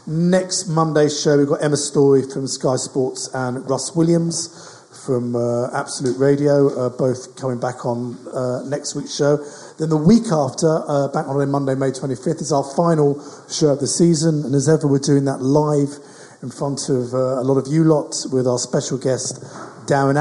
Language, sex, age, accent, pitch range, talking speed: English, male, 50-69, British, 130-160 Hz, 190 wpm